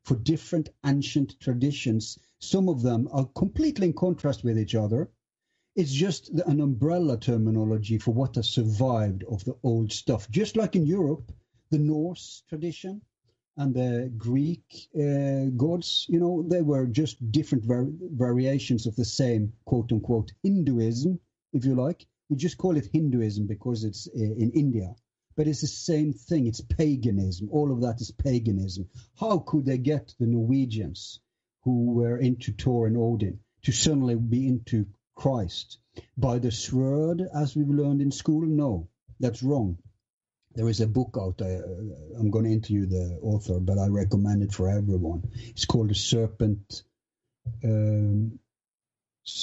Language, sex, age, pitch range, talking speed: English, male, 50-69, 110-145 Hz, 155 wpm